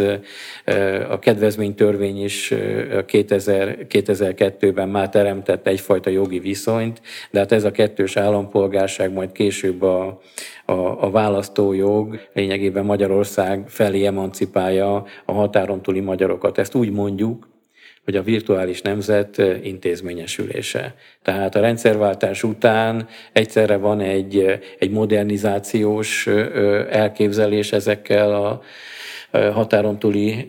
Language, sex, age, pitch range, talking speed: Hungarian, male, 50-69, 100-105 Hz, 95 wpm